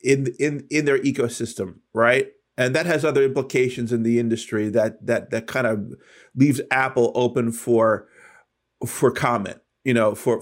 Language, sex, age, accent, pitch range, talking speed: English, male, 30-49, American, 115-140 Hz, 160 wpm